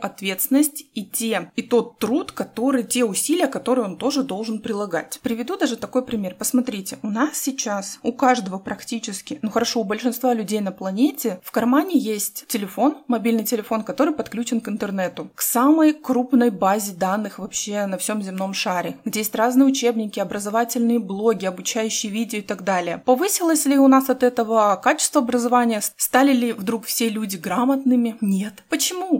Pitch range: 210-260 Hz